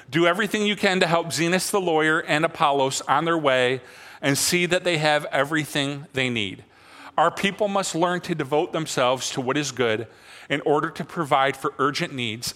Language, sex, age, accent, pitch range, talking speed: English, male, 40-59, American, 135-175 Hz, 190 wpm